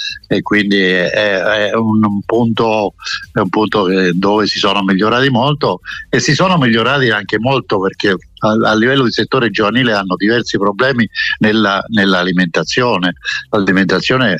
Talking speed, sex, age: 145 wpm, male, 60-79